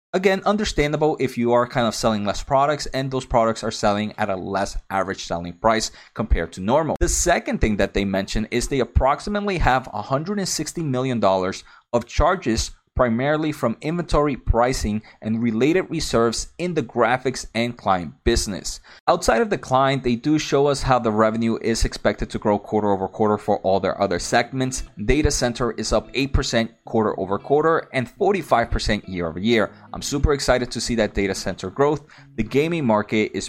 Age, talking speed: 30-49, 185 wpm